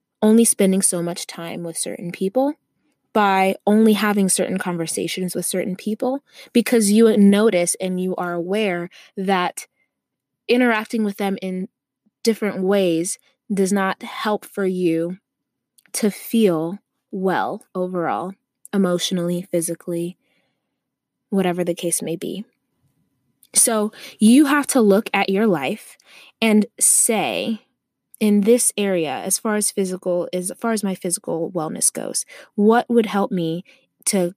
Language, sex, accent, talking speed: English, female, American, 135 wpm